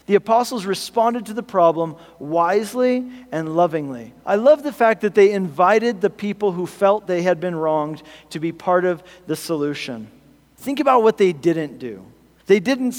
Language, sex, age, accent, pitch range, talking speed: English, male, 40-59, American, 165-220 Hz, 175 wpm